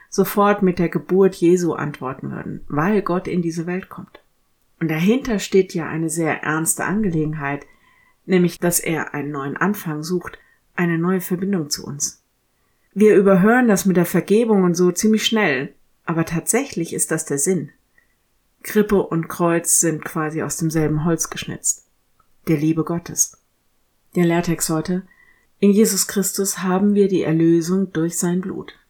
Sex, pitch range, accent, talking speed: female, 155-185 Hz, German, 155 wpm